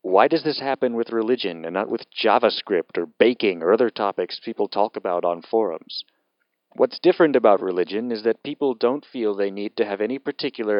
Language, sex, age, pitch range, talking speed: English, male, 30-49, 100-130 Hz, 195 wpm